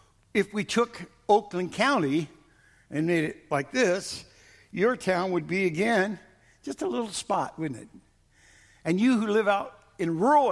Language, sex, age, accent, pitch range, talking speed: English, male, 60-79, American, 150-200 Hz, 160 wpm